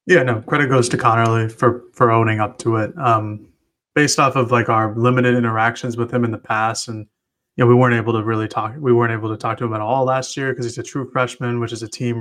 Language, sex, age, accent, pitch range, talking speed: English, male, 20-39, American, 115-130 Hz, 265 wpm